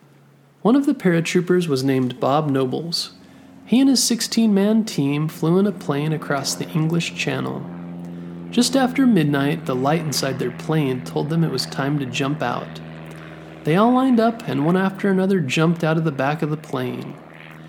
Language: English